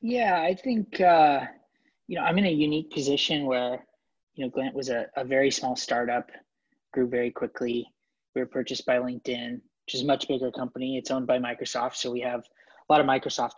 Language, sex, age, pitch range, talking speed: English, male, 20-39, 125-165 Hz, 205 wpm